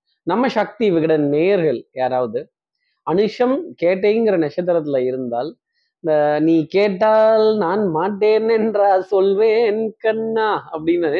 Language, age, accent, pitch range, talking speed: Tamil, 20-39, native, 145-220 Hz, 85 wpm